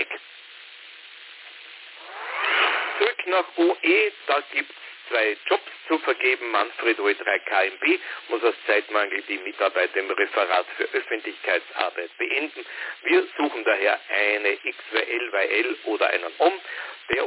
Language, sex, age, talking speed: German, male, 50-69, 110 wpm